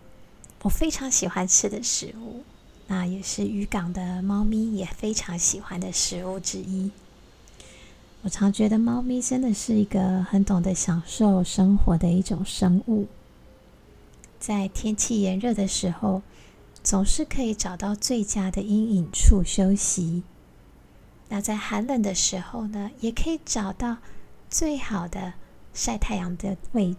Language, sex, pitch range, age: Chinese, female, 185-220 Hz, 20-39